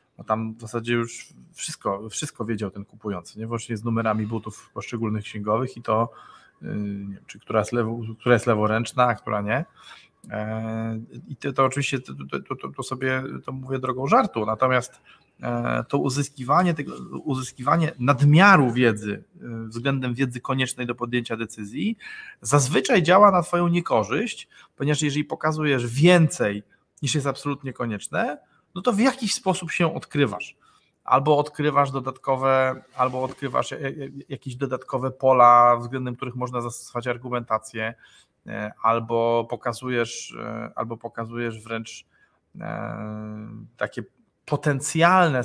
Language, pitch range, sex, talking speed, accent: Polish, 115-145 Hz, male, 130 wpm, native